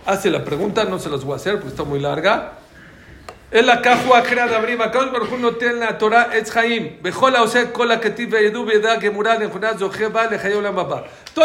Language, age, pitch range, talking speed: Spanish, 50-69, 150-230 Hz, 210 wpm